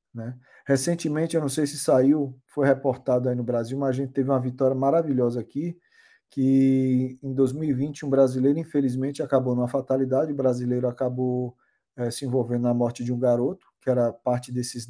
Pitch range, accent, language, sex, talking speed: 125-150 Hz, Brazilian, Portuguese, male, 175 wpm